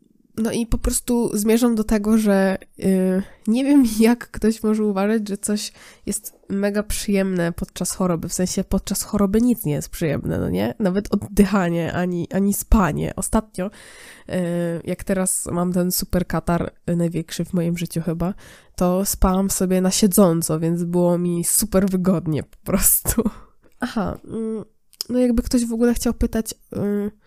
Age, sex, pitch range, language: 20-39, female, 175-220 Hz, Polish